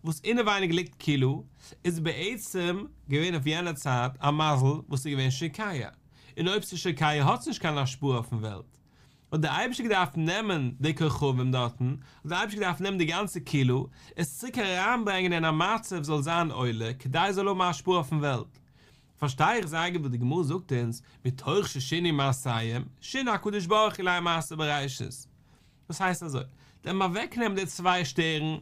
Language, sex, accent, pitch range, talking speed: English, male, German, 135-185 Hz, 65 wpm